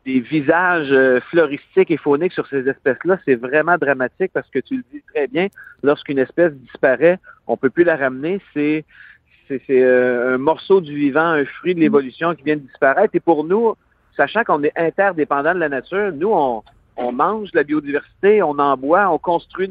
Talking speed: 195 wpm